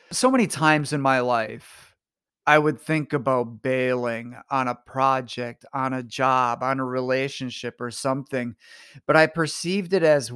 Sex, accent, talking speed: male, American, 155 wpm